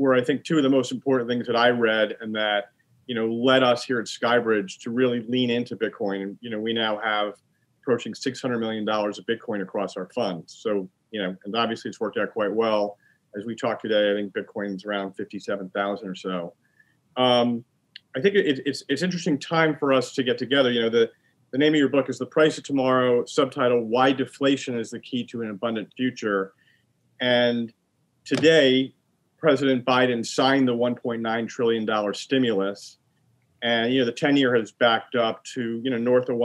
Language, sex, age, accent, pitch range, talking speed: English, male, 40-59, American, 110-130 Hz, 200 wpm